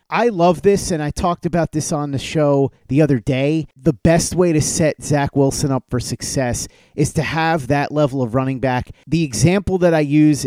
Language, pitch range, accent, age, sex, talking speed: English, 130-155 Hz, American, 30-49, male, 210 wpm